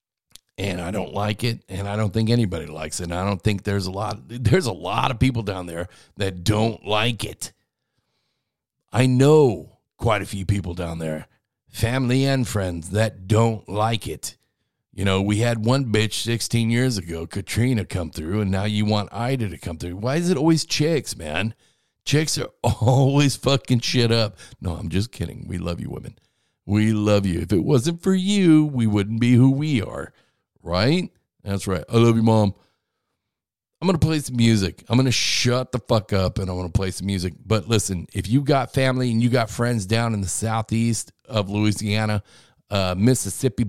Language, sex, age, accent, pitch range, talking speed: English, male, 50-69, American, 100-130 Hz, 200 wpm